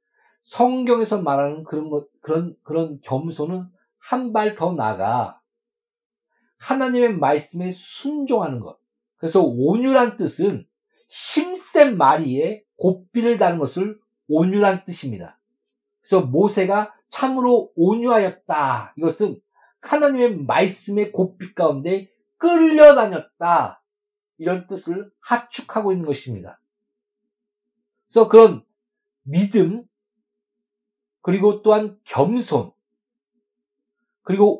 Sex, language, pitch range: male, Korean, 165-240 Hz